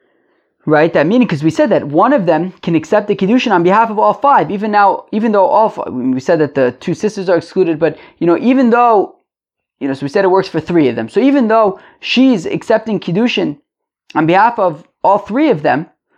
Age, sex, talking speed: 20-39, male, 230 wpm